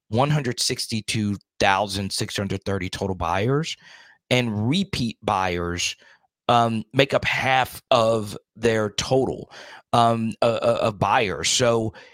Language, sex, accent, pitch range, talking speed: English, male, American, 105-125 Hz, 115 wpm